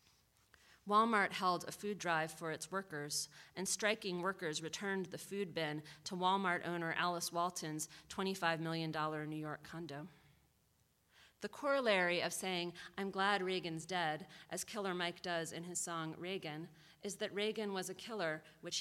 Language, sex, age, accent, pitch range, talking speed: English, female, 30-49, American, 155-195 Hz, 155 wpm